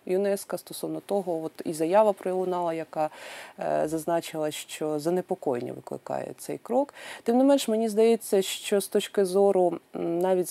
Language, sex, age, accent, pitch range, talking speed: Ukrainian, female, 30-49, native, 155-195 Hz, 145 wpm